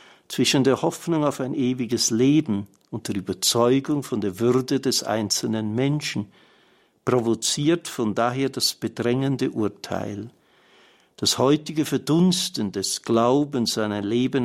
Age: 60-79